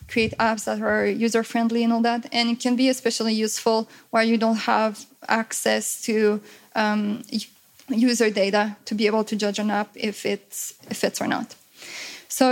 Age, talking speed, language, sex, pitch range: 20-39, 175 wpm, English, female, 220-240 Hz